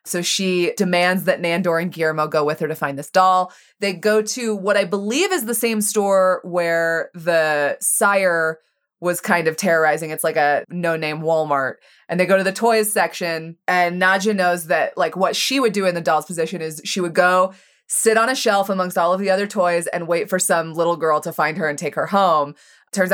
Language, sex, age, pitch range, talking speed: English, female, 20-39, 165-195 Hz, 220 wpm